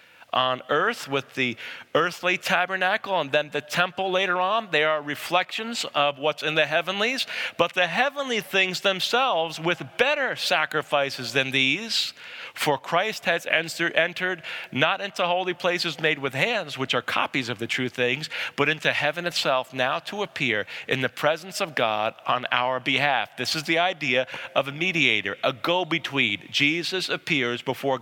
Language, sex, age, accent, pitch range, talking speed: English, male, 40-59, American, 140-180 Hz, 160 wpm